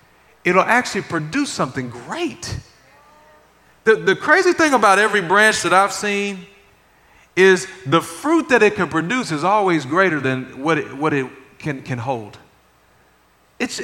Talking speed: 145 wpm